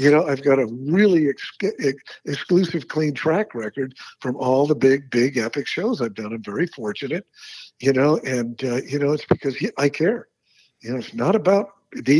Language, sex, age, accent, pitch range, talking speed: English, male, 60-79, American, 130-160 Hz, 185 wpm